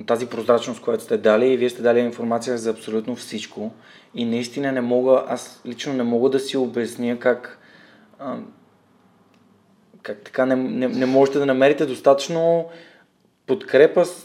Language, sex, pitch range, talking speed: Bulgarian, male, 125-150 Hz, 145 wpm